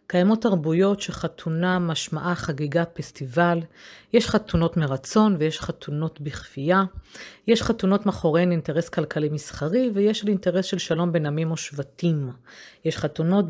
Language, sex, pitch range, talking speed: Hebrew, female, 150-190 Hz, 130 wpm